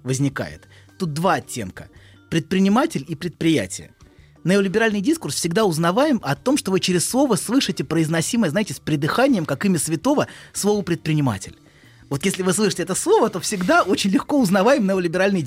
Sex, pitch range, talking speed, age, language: male, 140-205 Hz, 150 wpm, 20-39, Russian